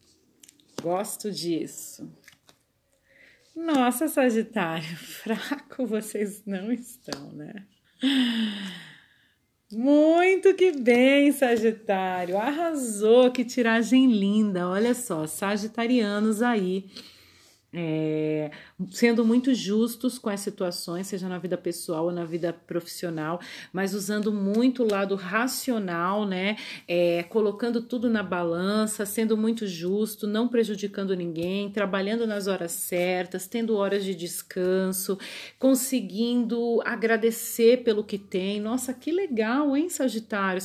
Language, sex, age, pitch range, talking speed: Portuguese, female, 40-59, 190-235 Hz, 105 wpm